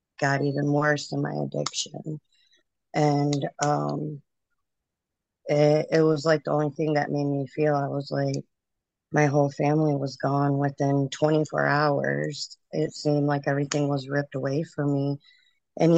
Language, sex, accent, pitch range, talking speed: English, female, American, 145-155 Hz, 150 wpm